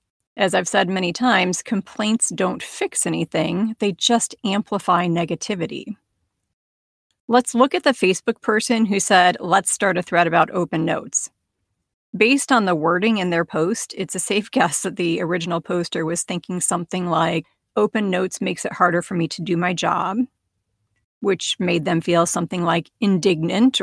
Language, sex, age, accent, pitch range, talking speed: English, female, 40-59, American, 170-210 Hz, 165 wpm